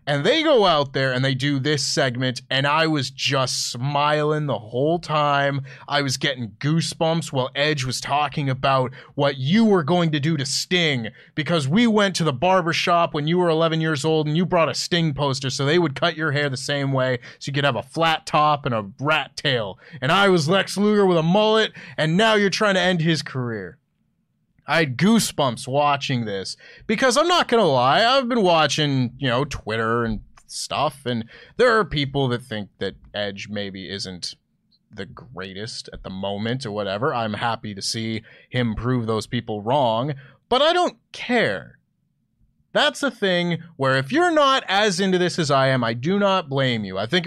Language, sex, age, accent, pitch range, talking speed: English, male, 30-49, American, 125-175 Hz, 200 wpm